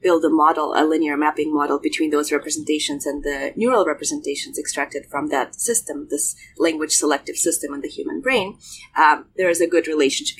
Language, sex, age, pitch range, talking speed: English, female, 30-49, 155-235 Hz, 185 wpm